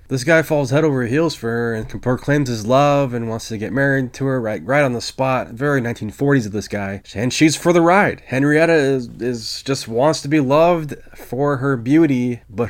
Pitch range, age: 115-140 Hz, 20-39